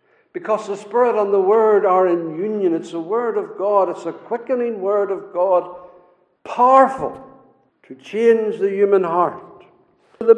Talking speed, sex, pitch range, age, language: 155 wpm, male, 185-255 Hz, 60-79, English